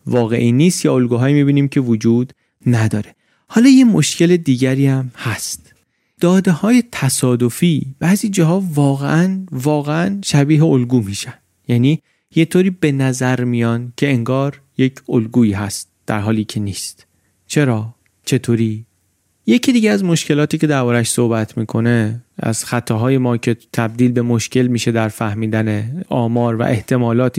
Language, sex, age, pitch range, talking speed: Persian, male, 30-49, 115-150 Hz, 140 wpm